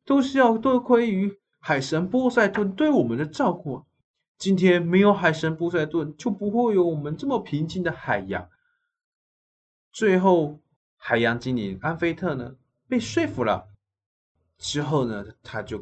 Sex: male